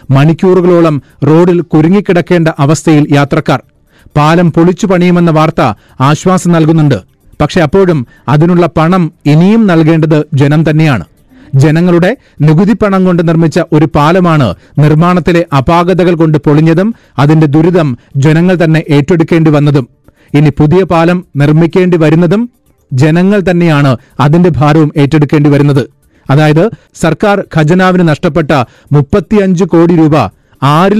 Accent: native